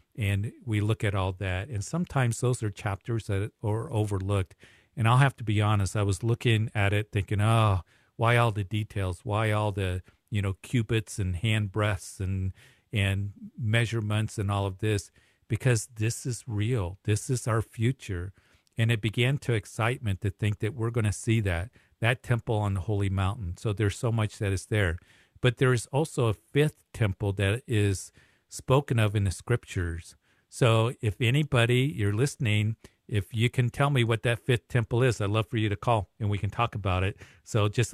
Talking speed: 195 wpm